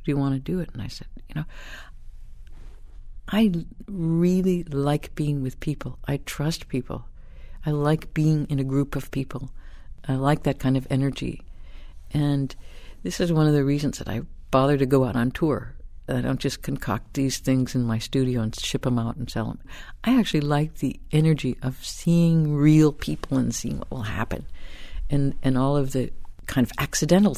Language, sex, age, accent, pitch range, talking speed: English, female, 60-79, American, 120-145 Hz, 190 wpm